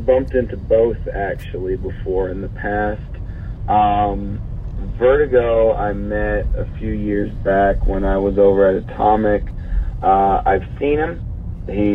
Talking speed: 135 wpm